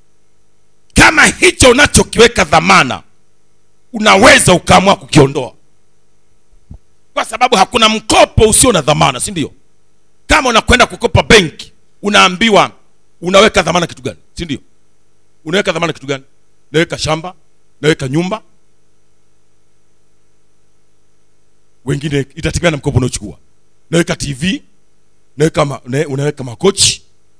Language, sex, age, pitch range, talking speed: Swahili, male, 50-69, 120-180 Hz, 95 wpm